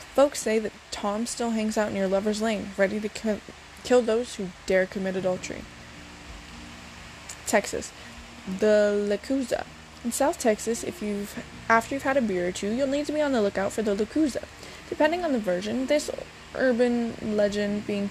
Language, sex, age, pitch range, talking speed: English, female, 20-39, 195-245 Hz, 170 wpm